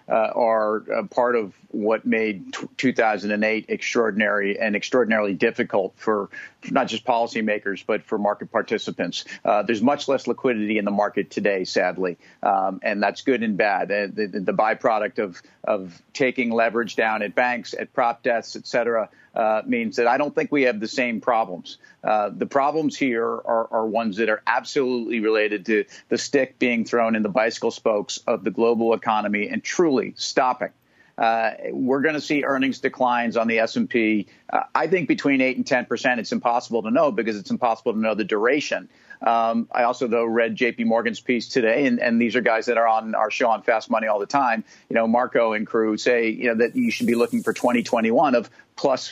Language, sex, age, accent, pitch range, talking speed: English, male, 50-69, American, 110-130 Hz, 195 wpm